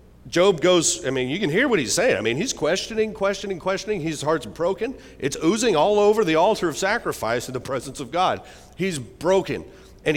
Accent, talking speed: American, 205 wpm